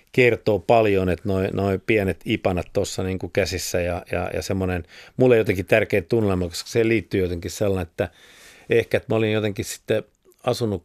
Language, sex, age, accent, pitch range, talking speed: Finnish, male, 50-69, native, 90-105 Hz, 165 wpm